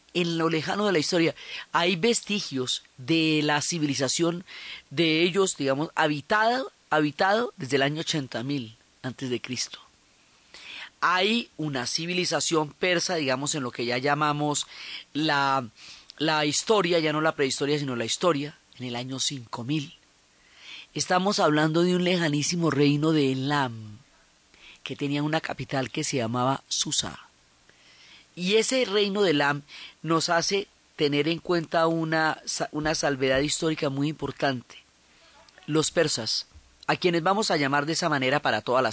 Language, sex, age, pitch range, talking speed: Spanish, female, 30-49, 135-170 Hz, 145 wpm